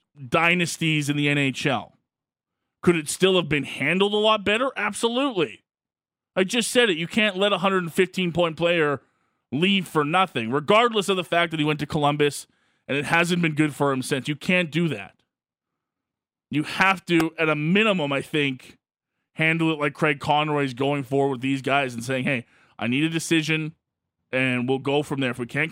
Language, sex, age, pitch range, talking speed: English, male, 20-39, 130-160 Hz, 195 wpm